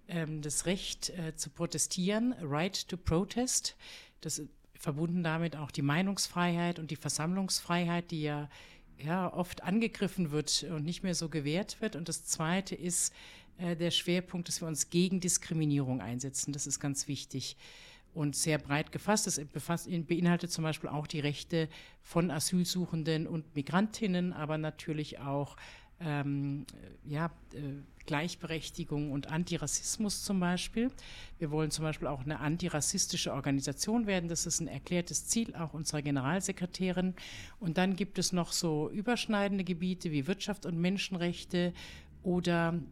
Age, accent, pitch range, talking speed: 50-69, German, 150-180 Hz, 145 wpm